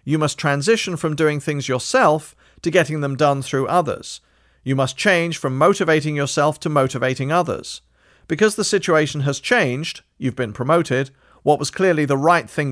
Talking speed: 170 wpm